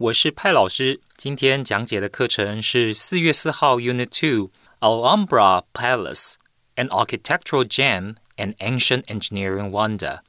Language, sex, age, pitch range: Chinese, male, 20-39, 105-150 Hz